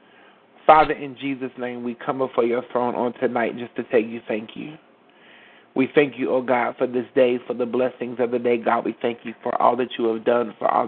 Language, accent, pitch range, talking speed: English, American, 120-130 Hz, 245 wpm